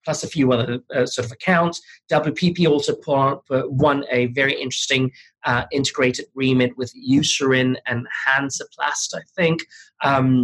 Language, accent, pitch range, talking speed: English, British, 125-150 Hz, 140 wpm